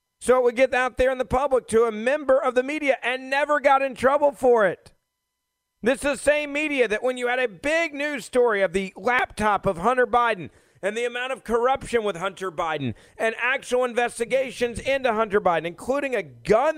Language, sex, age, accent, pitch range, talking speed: English, male, 40-59, American, 165-255 Hz, 205 wpm